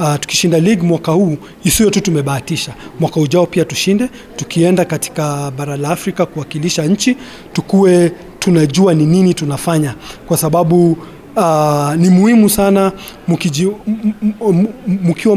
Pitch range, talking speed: 150-195 Hz, 115 wpm